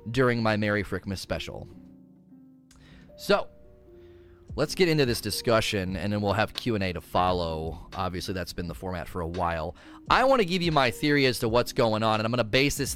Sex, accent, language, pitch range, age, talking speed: male, American, English, 100-135 Hz, 30-49, 205 wpm